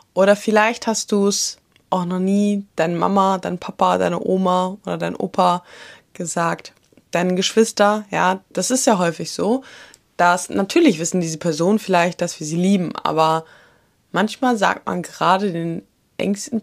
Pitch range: 160-190 Hz